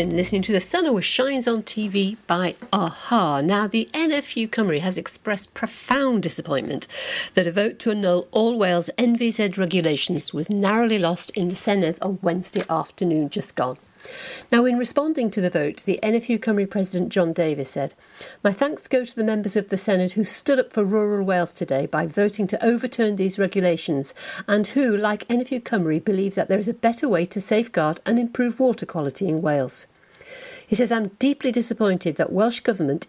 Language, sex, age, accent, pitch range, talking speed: English, female, 50-69, British, 180-235 Hz, 185 wpm